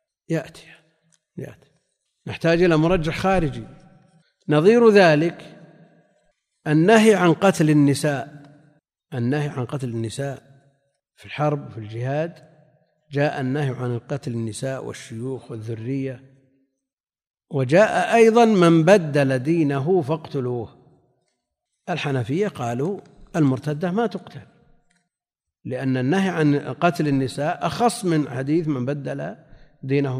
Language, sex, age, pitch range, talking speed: Arabic, male, 50-69, 135-170 Hz, 100 wpm